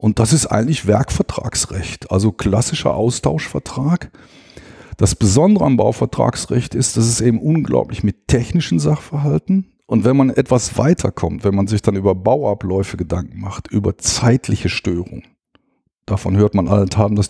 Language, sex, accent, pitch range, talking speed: German, male, German, 100-125 Hz, 145 wpm